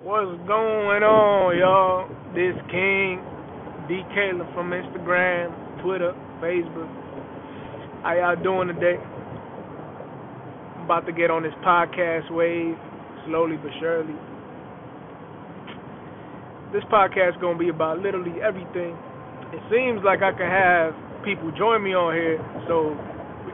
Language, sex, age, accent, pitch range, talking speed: English, male, 20-39, American, 160-185 Hz, 125 wpm